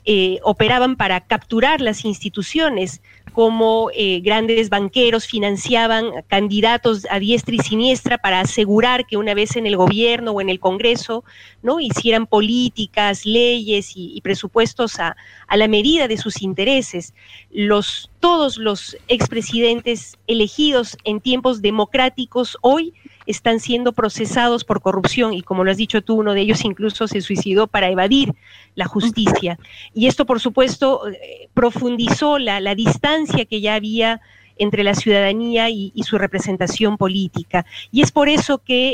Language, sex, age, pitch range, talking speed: Spanish, female, 40-59, 200-235 Hz, 150 wpm